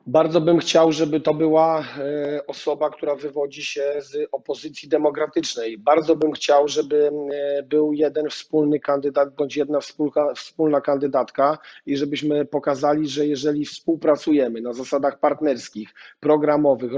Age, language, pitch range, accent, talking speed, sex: 40-59, Polish, 145-160 Hz, native, 125 wpm, male